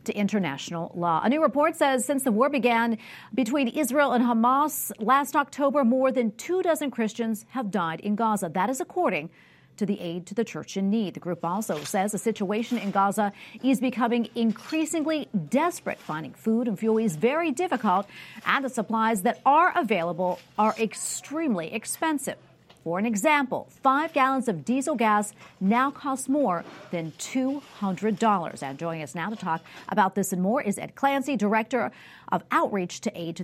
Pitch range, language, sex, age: 190-255 Hz, English, female, 40-59